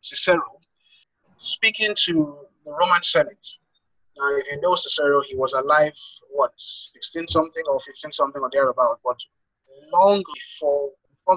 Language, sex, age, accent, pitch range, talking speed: English, male, 30-49, Nigerian, 140-200 Hz, 125 wpm